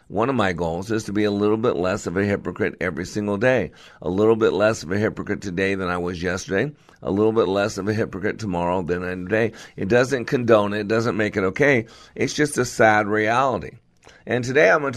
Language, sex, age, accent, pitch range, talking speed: English, male, 50-69, American, 100-120 Hz, 235 wpm